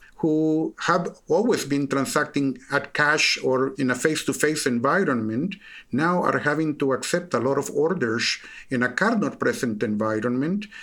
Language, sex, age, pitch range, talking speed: English, male, 50-69, 130-165 Hz, 140 wpm